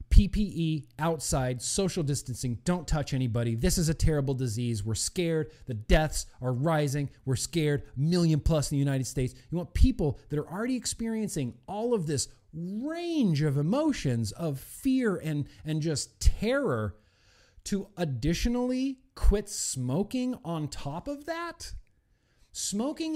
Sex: male